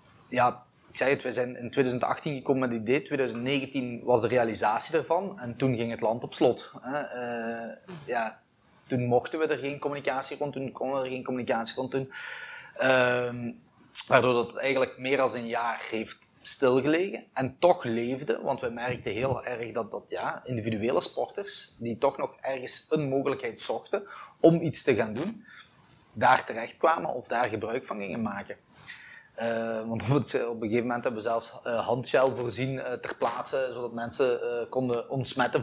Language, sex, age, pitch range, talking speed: Dutch, male, 30-49, 120-135 Hz, 175 wpm